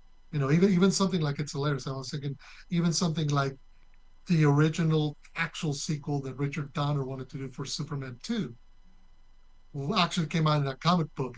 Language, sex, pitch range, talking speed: English, male, 135-155 Hz, 180 wpm